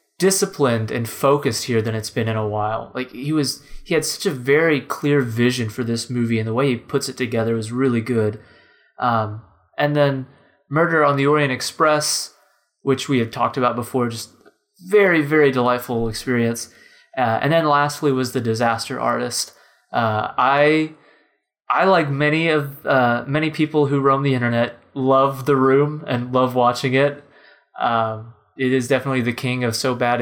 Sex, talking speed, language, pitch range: male, 175 wpm, English, 125-160 Hz